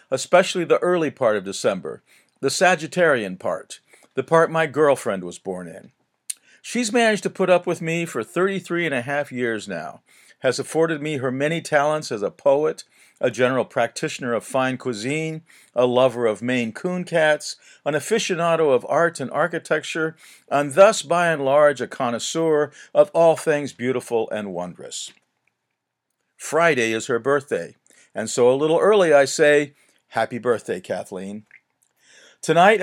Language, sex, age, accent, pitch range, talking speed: English, male, 50-69, American, 135-175 Hz, 155 wpm